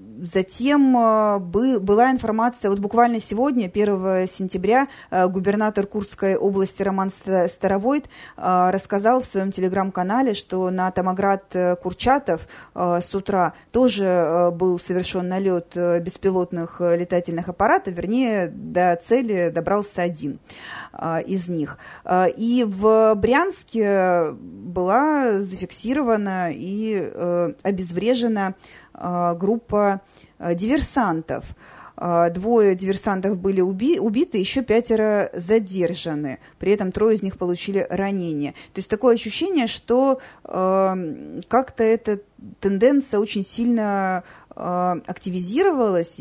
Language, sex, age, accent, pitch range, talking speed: Russian, female, 20-39, native, 180-220 Hz, 90 wpm